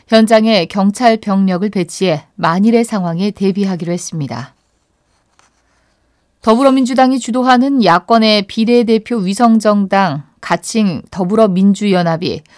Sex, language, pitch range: female, Korean, 185-235 Hz